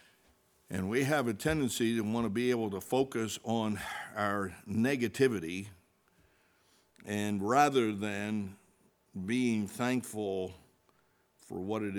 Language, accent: English, American